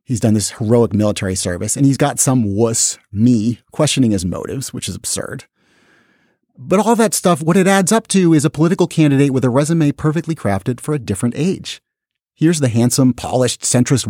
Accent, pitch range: American, 110-155 Hz